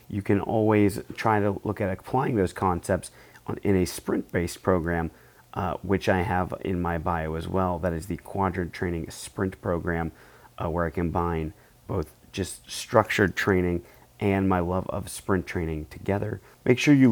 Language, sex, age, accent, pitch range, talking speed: English, male, 30-49, American, 90-105 Hz, 170 wpm